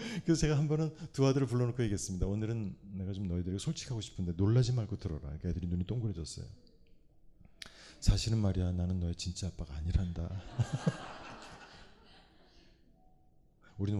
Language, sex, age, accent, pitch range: Korean, male, 40-59, native, 95-130 Hz